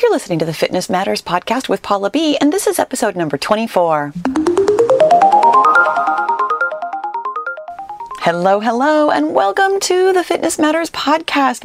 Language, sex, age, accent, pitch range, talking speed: English, female, 30-49, American, 200-315 Hz, 130 wpm